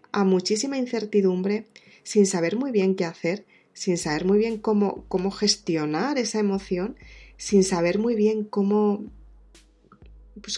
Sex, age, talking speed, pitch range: female, 20-39, 130 wpm, 185-220 Hz